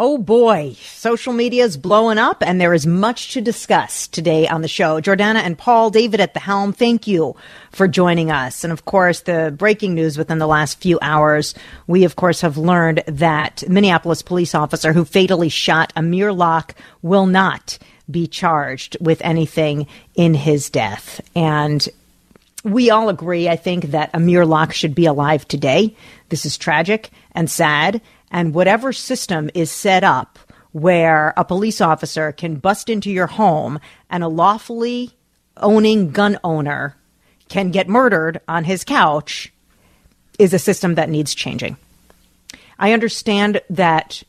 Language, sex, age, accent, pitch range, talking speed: English, female, 40-59, American, 160-200 Hz, 160 wpm